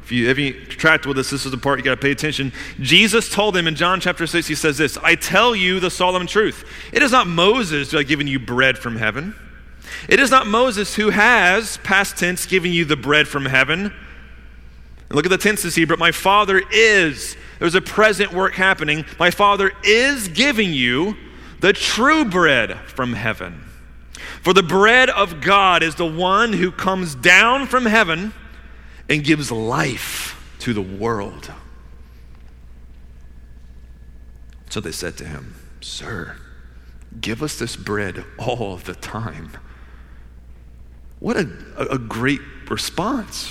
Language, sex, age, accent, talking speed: English, male, 30-49, American, 160 wpm